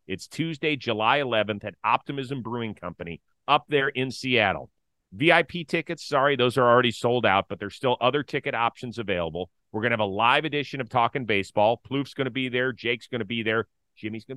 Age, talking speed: 40-59, 205 wpm